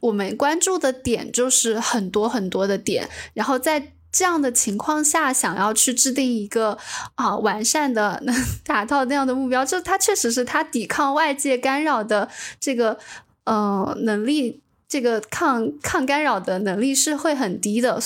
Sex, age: female, 10-29